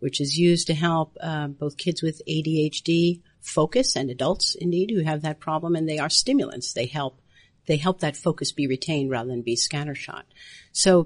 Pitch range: 150-195 Hz